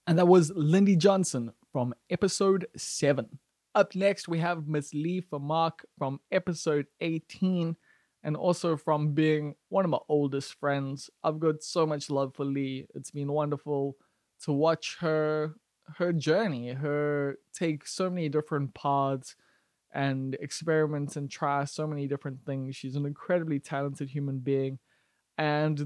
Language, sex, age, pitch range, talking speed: English, male, 20-39, 140-170 Hz, 150 wpm